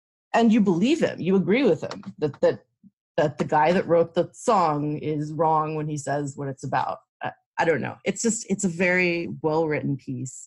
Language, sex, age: English, female, 30-49